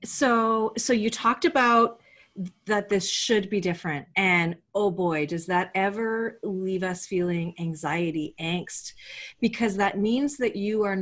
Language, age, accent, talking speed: English, 30-49, American, 145 wpm